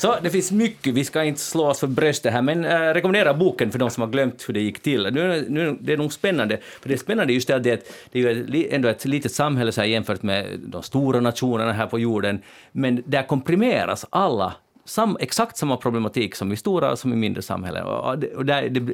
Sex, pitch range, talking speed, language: male, 100-130 Hz, 235 wpm, Swedish